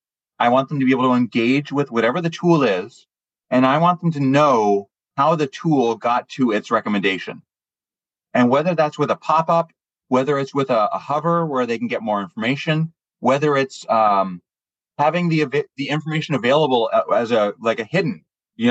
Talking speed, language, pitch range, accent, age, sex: 185 wpm, English, 120-155 Hz, American, 30-49, male